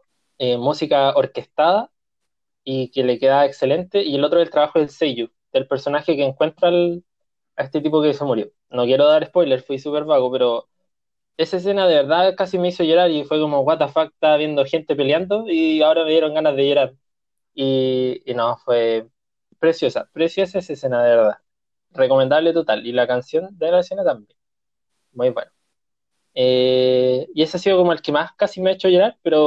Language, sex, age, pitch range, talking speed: Spanish, male, 20-39, 135-175 Hz, 195 wpm